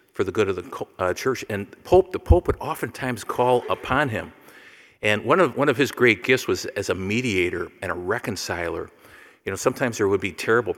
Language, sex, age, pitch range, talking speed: English, male, 50-69, 95-120 Hz, 210 wpm